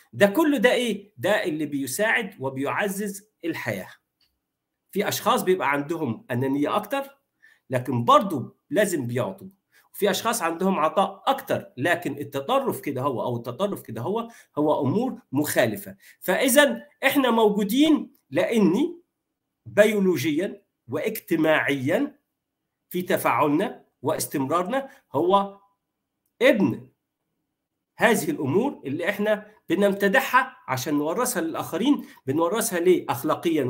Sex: male